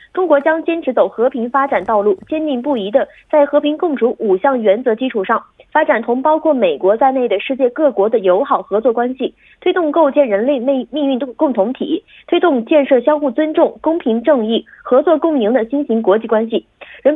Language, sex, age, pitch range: Korean, female, 20-39, 230-305 Hz